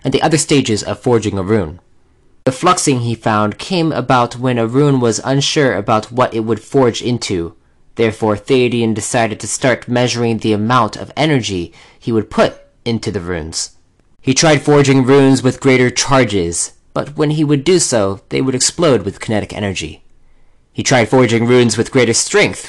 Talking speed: 175 wpm